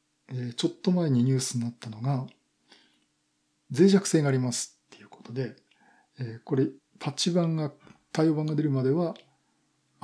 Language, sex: Japanese, male